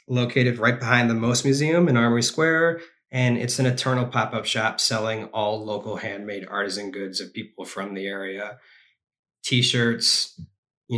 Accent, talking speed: American, 155 wpm